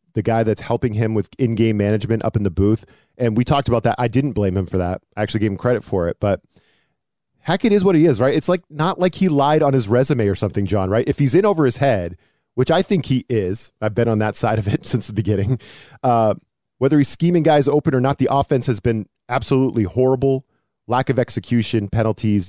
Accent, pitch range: American, 105-140 Hz